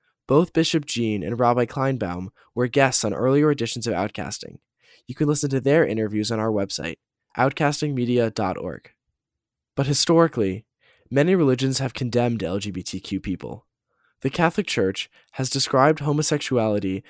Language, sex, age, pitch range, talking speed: English, male, 10-29, 110-140 Hz, 130 wpm